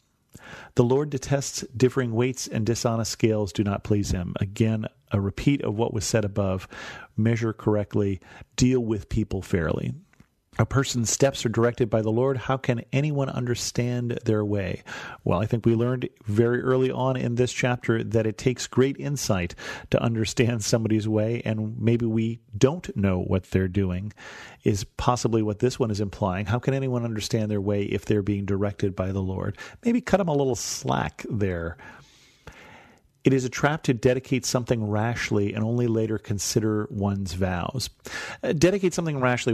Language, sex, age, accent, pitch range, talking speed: English, male, 40-59, American, 105-130 Hz, 170 wpm